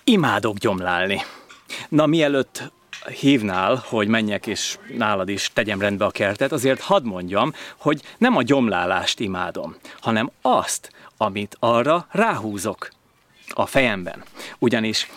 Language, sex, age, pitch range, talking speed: Hungarian, male, 30-49, 105-150 Hz, 120 wpm